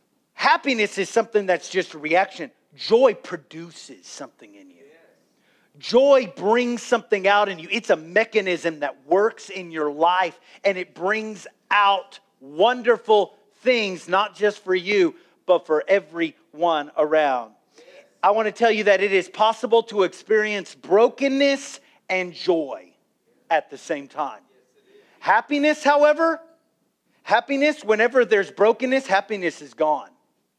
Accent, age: American, 40-59